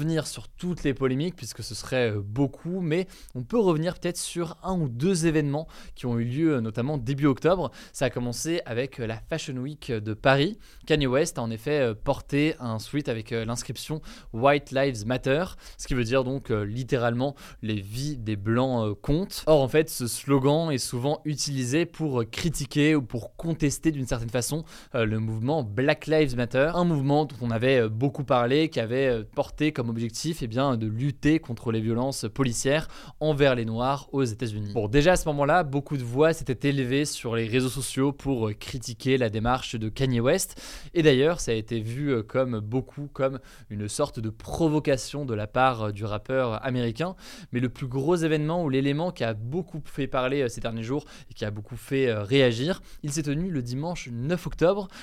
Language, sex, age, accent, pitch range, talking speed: French, male, 20-39, French, 120-150 Hz, 190 wpm